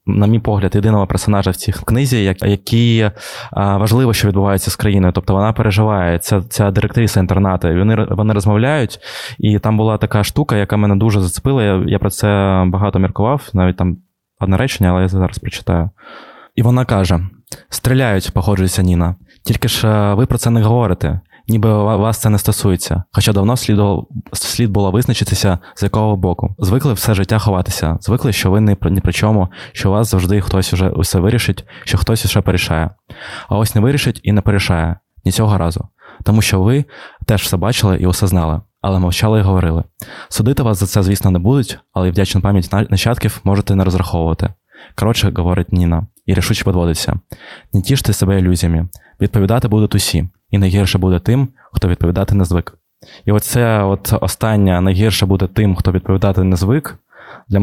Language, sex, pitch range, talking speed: Ukrainian, male, 95-110 Hz, 175 wpm